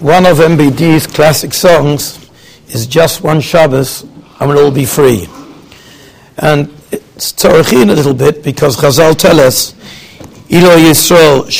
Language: English